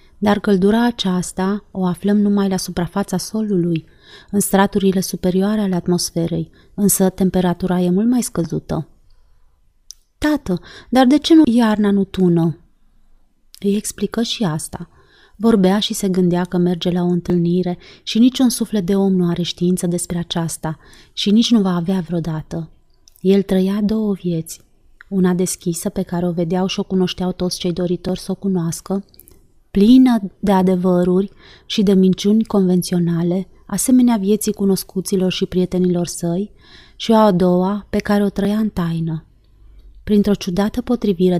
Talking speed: 150 wpm